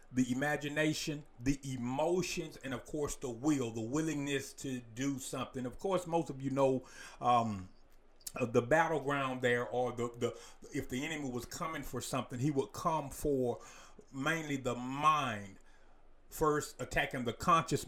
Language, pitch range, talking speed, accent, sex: English, 120-155 Hz, 155 wpm, American, male